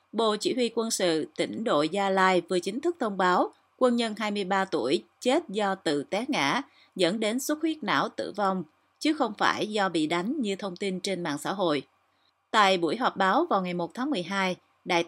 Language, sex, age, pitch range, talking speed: Vietnamese, female, 30-49, 180-230 Hz, 210 wpm